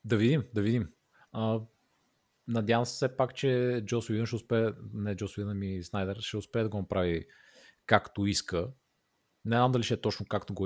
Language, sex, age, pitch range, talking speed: Bulgarian, male, 30-49, 100-120 Hz, 175 wpm